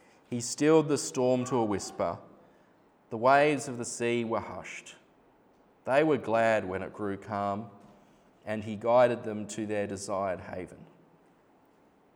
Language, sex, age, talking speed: English, male, 20-39, 145 wpm